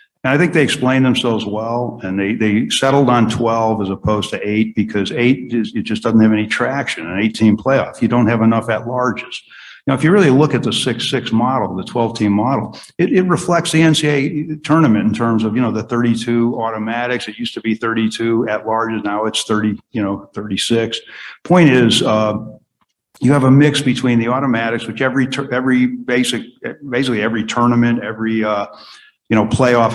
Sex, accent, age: male, American, 50-69